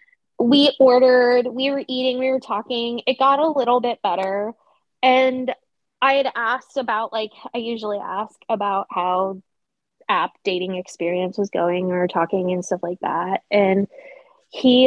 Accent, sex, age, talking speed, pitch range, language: American, female, 20-39, 155 wpm, 205-265 Hz, English